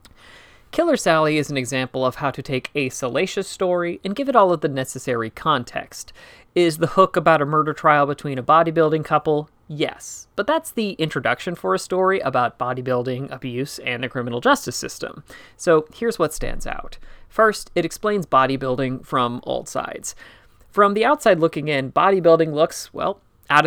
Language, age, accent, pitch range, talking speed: English, 30-49, American, 130-170 Hz, 170 wpm